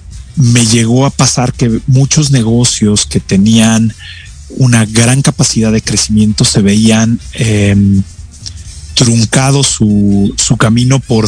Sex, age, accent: male, 40-59, Mexican